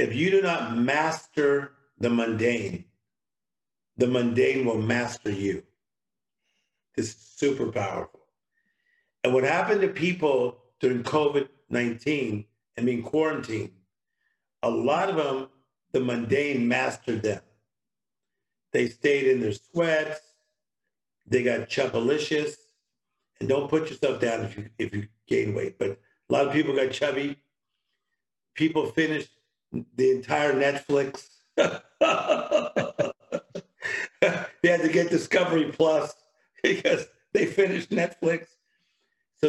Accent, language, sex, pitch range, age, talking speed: American, English, male, 120-165 Hz, 50-69, 115 wpm